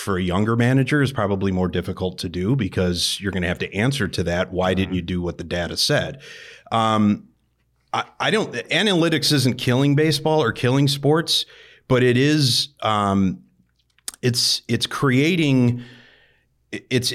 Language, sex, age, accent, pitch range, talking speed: English, male, 30-49, American, 95-125 Hz, 160 wpm